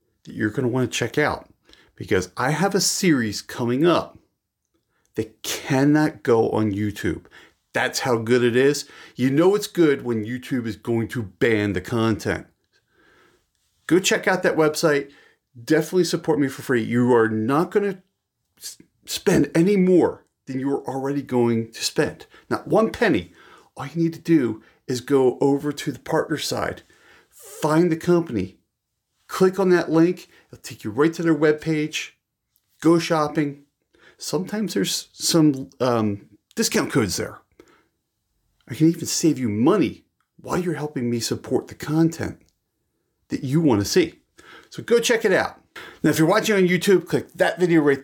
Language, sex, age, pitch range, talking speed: English, male, 40-59, 120-170 Hz, 165 wpm